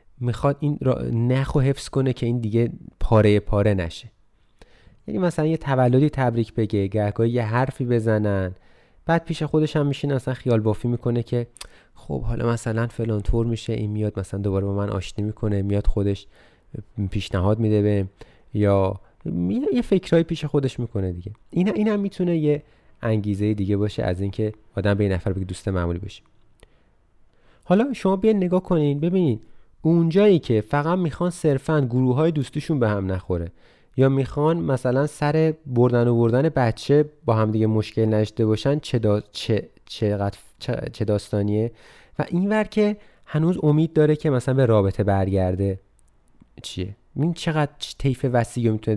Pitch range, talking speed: 105-150 Hz, 165 wpm